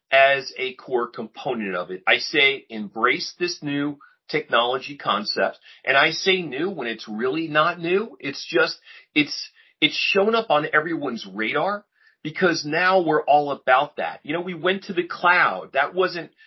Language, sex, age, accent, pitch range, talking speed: English, male, 40-59, American, 145-185 Hz, 170 wpm